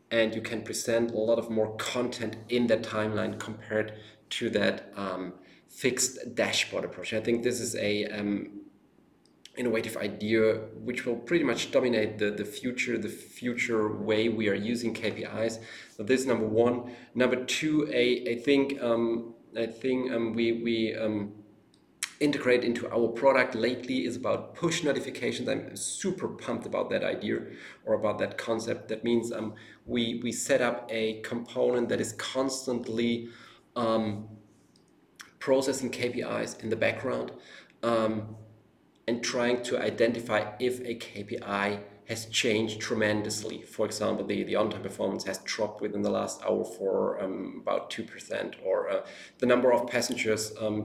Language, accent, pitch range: English, German, 110-120 Hz